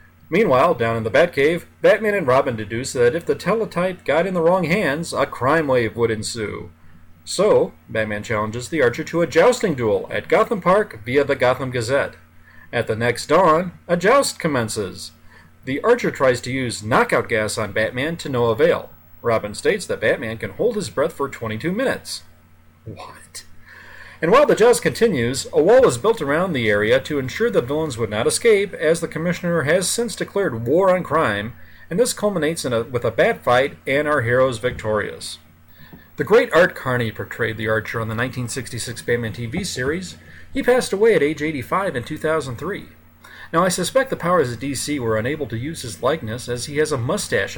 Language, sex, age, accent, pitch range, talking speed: English, male, 40-59, American, 110-175 Hz, 190 wpm